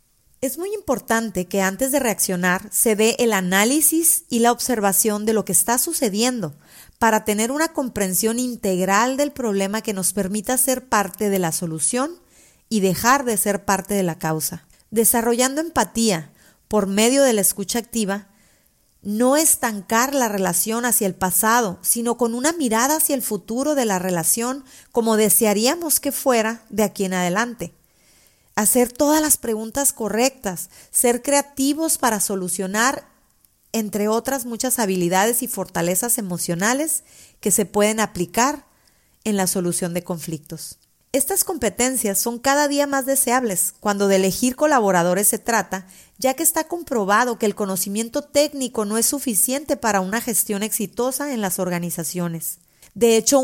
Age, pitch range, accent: 40-59, 195-255 Hz, Mexican